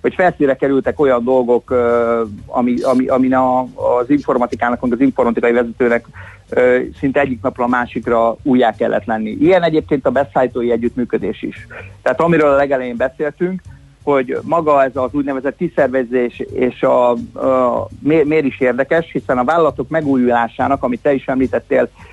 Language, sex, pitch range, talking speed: Hungarian, male, 120-140 Hz, 145 wpm